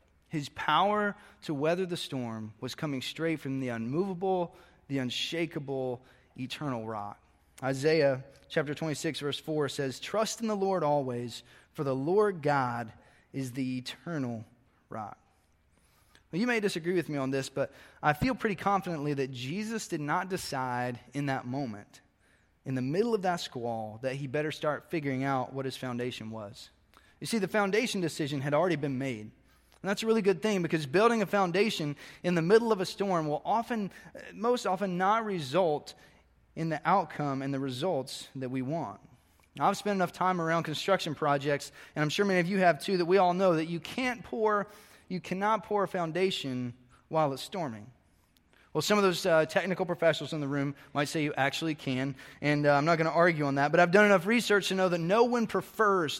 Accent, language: American, English